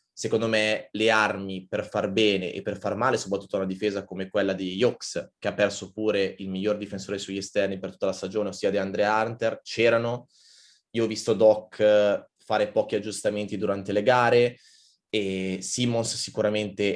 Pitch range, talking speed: 100-110 Hz, 175 wpm